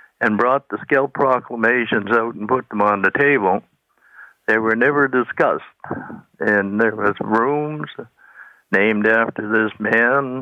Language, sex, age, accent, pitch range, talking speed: English, male, 60-79, American, 105-120 Hz, 140 wpm